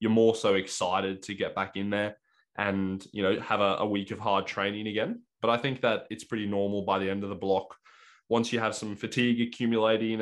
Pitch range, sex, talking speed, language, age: 100-110 Hz, male, 230 wpm, English, 20-39